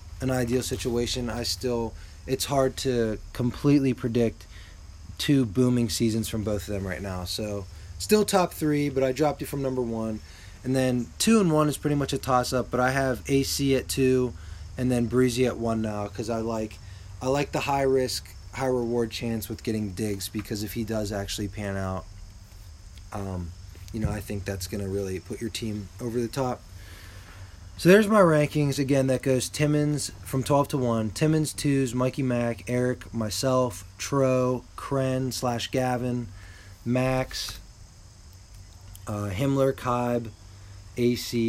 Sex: male